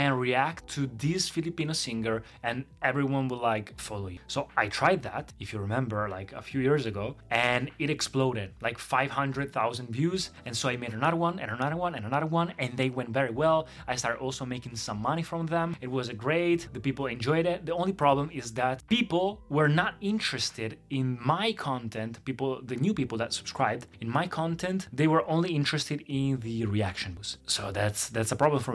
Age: 20-39